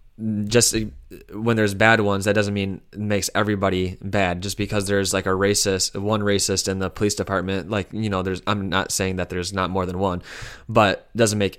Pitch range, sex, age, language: 95-105 Hz, male, 20-39, English